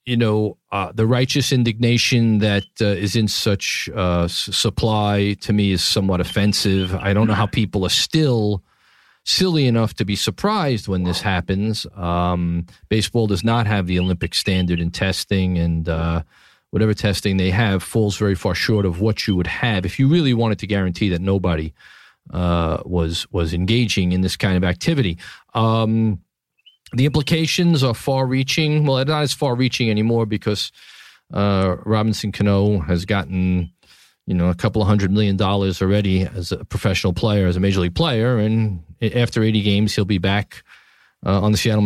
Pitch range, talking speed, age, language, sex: 95-125 Hz, 175 wpm, 40-59, English, male